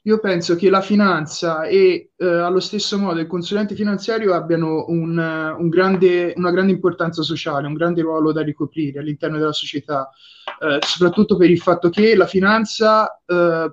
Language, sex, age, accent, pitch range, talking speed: Italian, male, 20-39, native, 155-180 Hz, 165 wpm